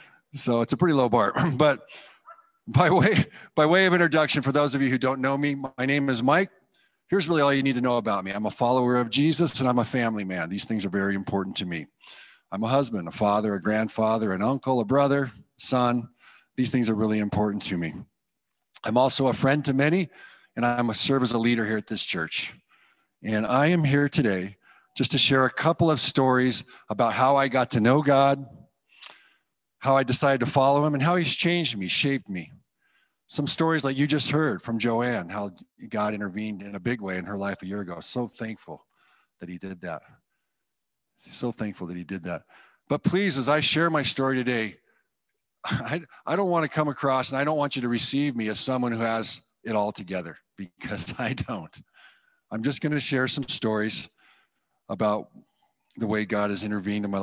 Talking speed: 210 wpm